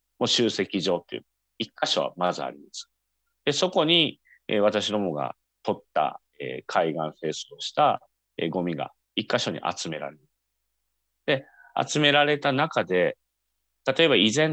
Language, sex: Japanese, male